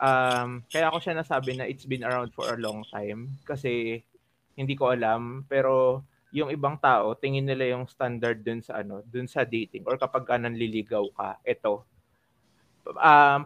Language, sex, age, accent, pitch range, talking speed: Filipino, male, 20-39, native, 115-140 Hz, 170 wpm